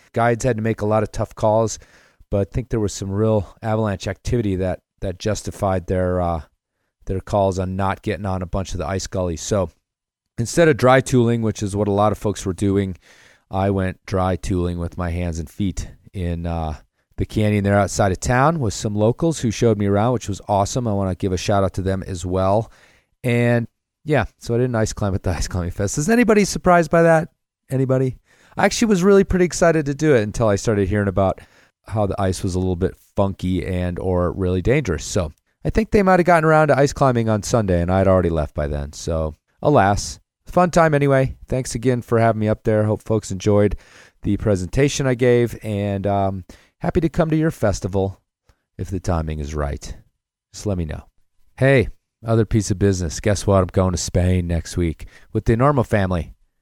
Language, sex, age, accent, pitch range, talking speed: English, male, 30-49, American, 95-120 Hz, 215 wpm